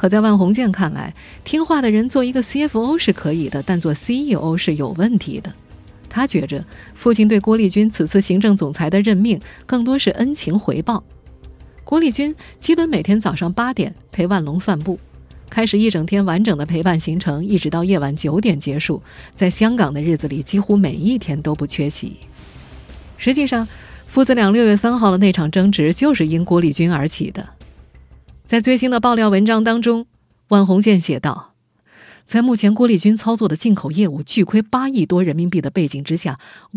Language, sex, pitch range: Chinese, female, 165-230 Hz